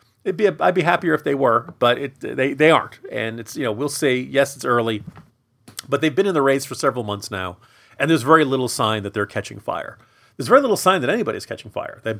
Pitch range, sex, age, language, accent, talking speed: 110-145 Hz, male, 40-59, English, American, 250 wpm